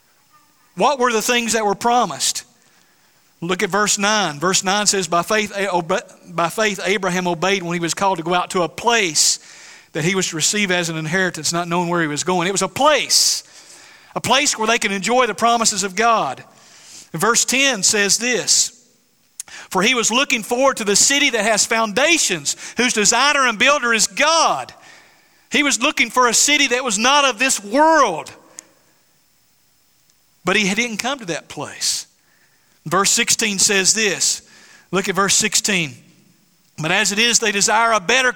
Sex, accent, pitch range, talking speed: male, American, 185-245 Hz, 180 wpm